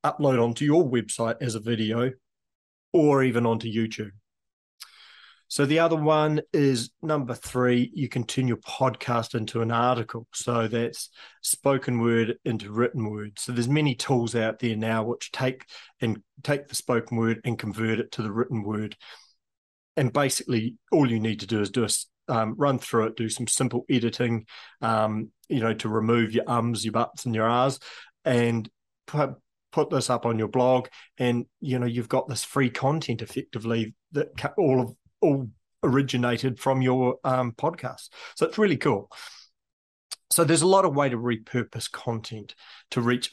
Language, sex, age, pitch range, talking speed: English, male, 40-59, 115-130 Hz, 175 wpm